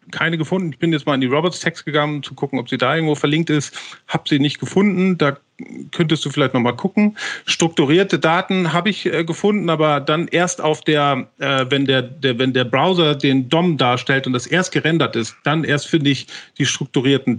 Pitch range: 140-170 Hz